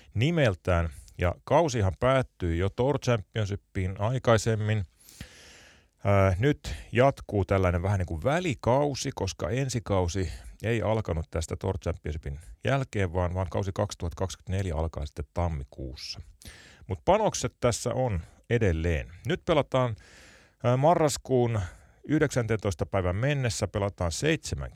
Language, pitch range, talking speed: Finnish, 85-115 Hz, 105 wpm